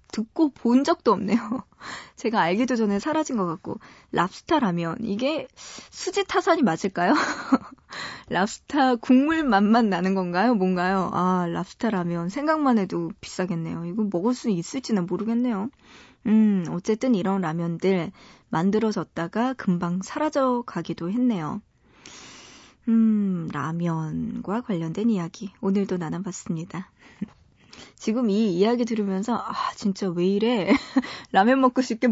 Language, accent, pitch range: Korean, native, 185-255 Hz